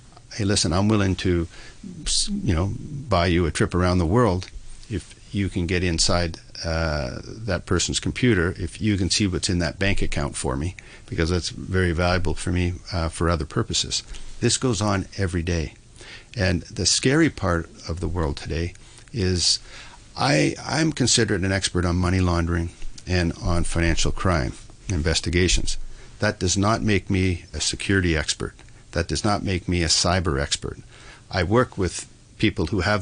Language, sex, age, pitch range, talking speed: English, male, 60-79, 85-115 Hz, 170 wpm